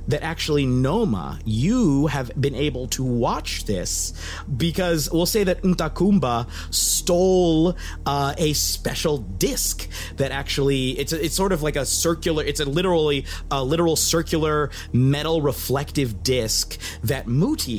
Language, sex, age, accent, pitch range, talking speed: English, male, 30-49, American, 105-155 Hz, 140 wpm